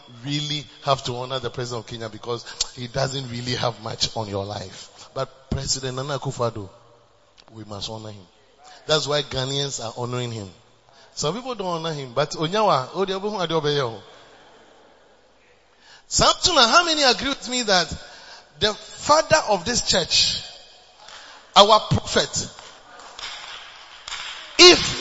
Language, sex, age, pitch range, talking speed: English, male, 30-49, 130-205 Hz, 120 wpm